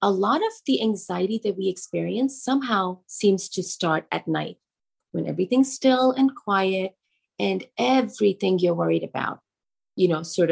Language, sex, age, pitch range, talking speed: English, female, 30-49, 170-225 Hz, 155 wpm